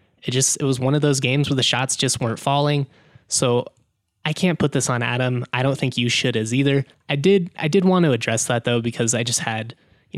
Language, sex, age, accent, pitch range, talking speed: English, male, 20-39, American, 115-140 Hz, 235 wpm